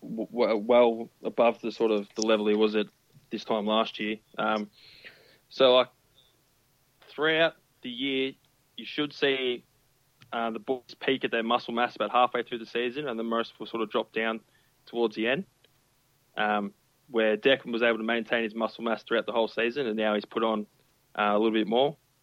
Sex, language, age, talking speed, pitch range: male, English, 20-39, 190 wpm, 110-135 Hz